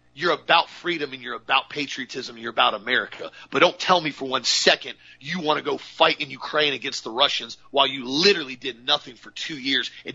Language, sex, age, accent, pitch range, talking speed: English, male, 40-59, American, 130-175 Hz, 220 wpm